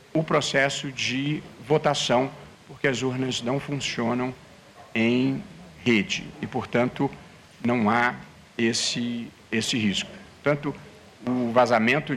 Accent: Brazilian